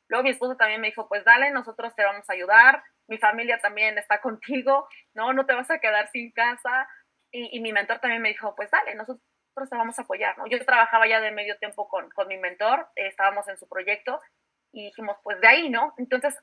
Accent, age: Mexican, 30-49